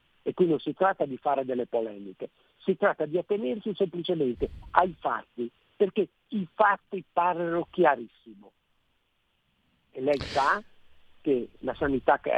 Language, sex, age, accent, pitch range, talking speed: Italian, male, 50-69, native, 130-180 Hz, 130 wpm